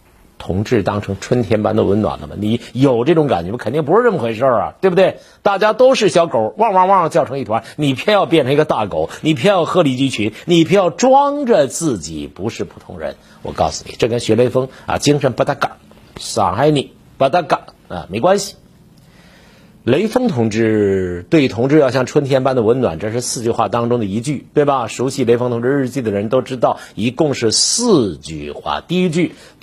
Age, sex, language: 50-69, male, Chinese